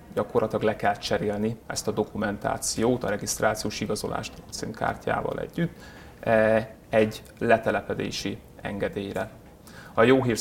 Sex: male